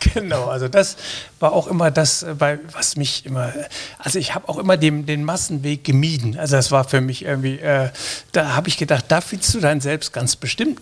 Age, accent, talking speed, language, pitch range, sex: 60-79, German, 205 wpm, German, 130-160 Hz, male